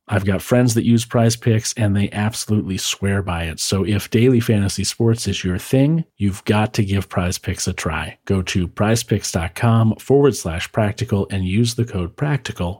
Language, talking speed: English, 190 wpm